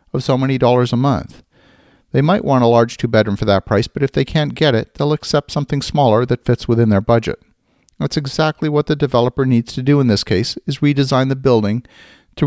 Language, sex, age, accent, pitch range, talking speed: English, male, 50-69, American, 115-145 Hz, 225 wpm